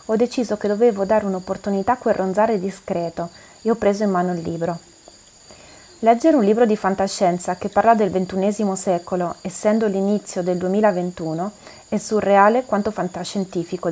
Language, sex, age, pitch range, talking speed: Italian, female, 30-49, 185-215 Hz, 150 wpm